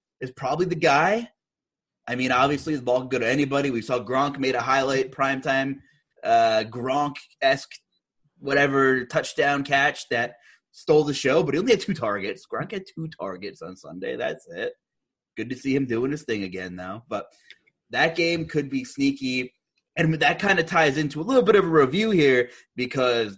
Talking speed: 185 wpm